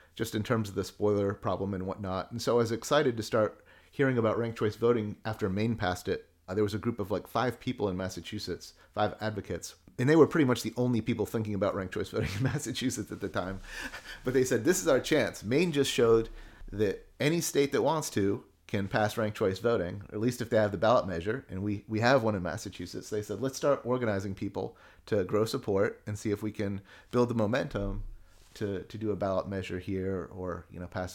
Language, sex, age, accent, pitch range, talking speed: English, male, 30-49, American, 95-120 Hz, 230 wpm